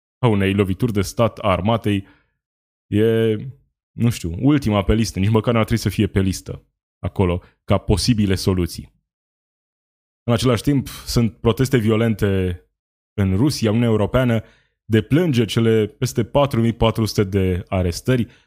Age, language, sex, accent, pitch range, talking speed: 20-39, Romanian, male, native, 100-120 Hz, 135 wpm